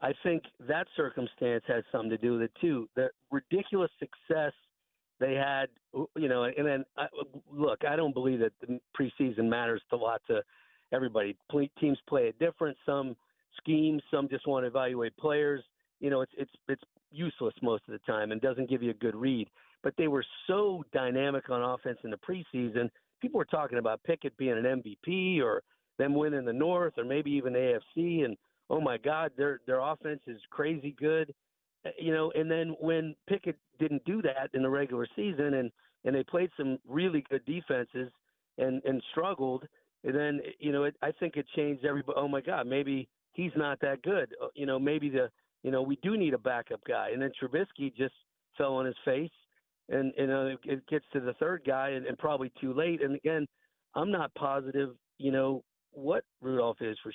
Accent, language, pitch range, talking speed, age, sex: American, English, 130-155 Hz, 195 wpm, 50-69, male